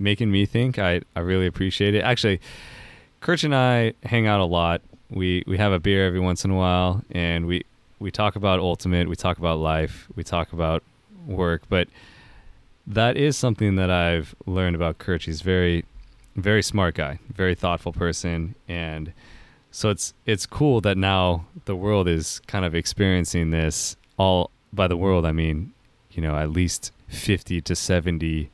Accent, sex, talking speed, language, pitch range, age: American, male, 175 wpm, English, 85-105 Hz, 20-39